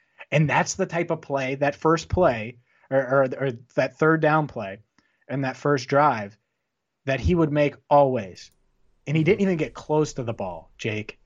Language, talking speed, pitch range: English, 185 wpm, 125-150 Hz